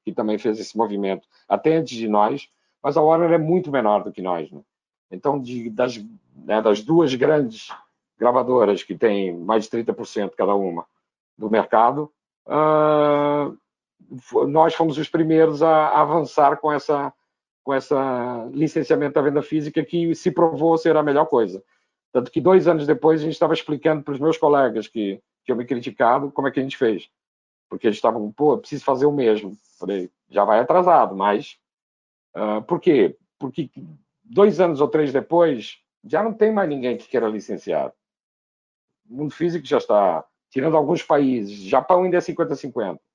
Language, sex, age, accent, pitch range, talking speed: Portuguese, male, 50-69, Brazilian, 120-160 Hz, 170 wpm